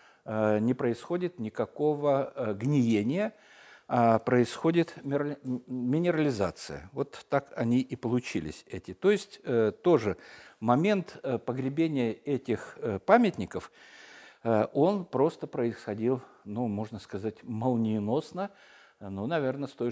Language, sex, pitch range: Russian, male, 110-150 Hz